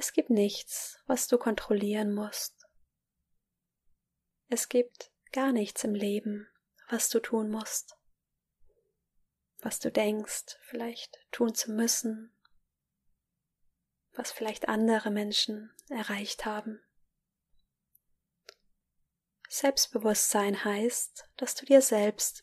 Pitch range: 210-245 Hz